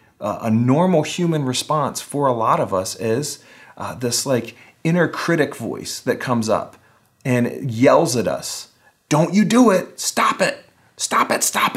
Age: 30-49